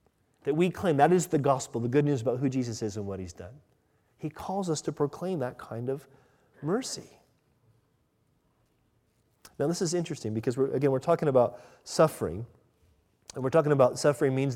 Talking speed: 175 wpm